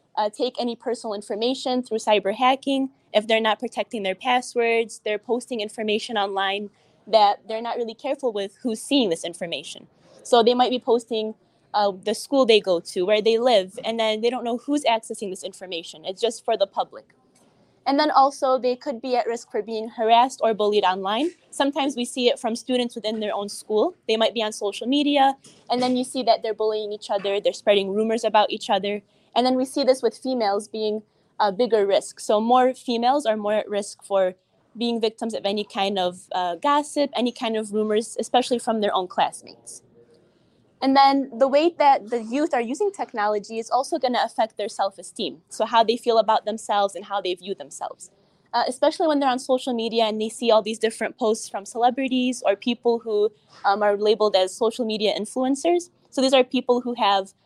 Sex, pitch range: female, 210-250 Hz